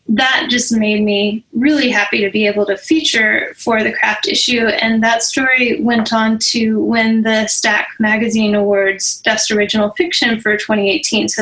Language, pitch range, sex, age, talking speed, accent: English, 210-255 Hz, female, 10-29, 170 wpm, American